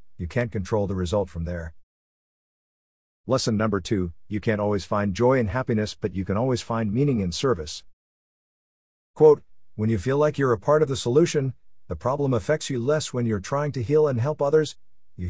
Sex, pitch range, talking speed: male, 90-115 Hz, 195 wpm